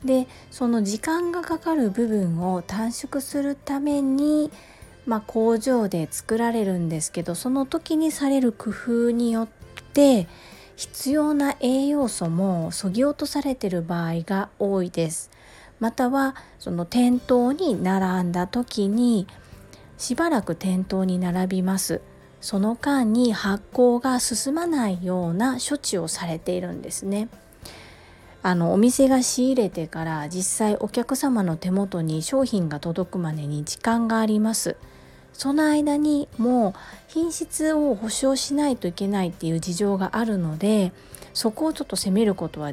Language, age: Japanese, 40-59